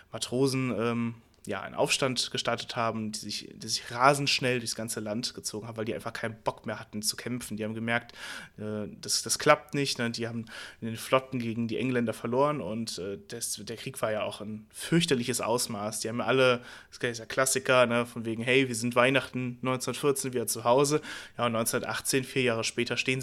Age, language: 20-39, German